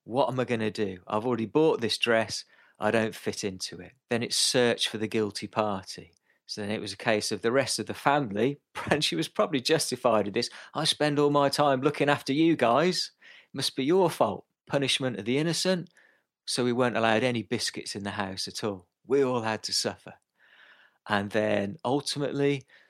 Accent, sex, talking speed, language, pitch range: British, male, 205 wpm, English, 105-140 Hz